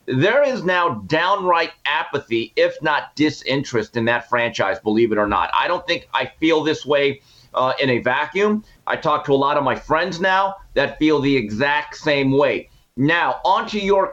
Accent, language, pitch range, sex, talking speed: American, English, 135-180 Hz, male, 185 wpm